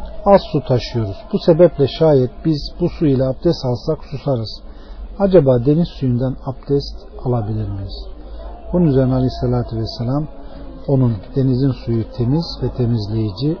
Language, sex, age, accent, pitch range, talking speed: Turkish, male, 50-69, native, 125-165 Hz, 130 wpm